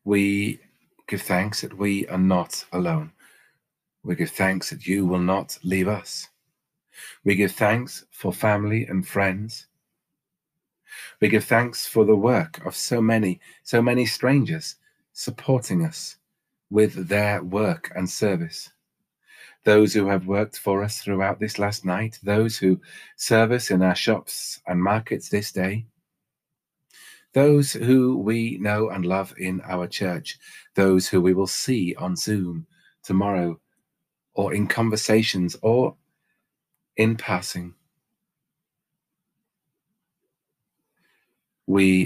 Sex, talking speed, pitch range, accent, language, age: male, 125 wpm, 95-115 Hz, British, English, 40-59